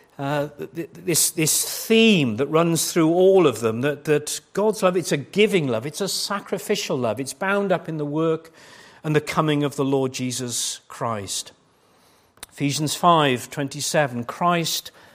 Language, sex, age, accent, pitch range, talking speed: English, male, 50-69, British, 135-175 Hz, 160 wpm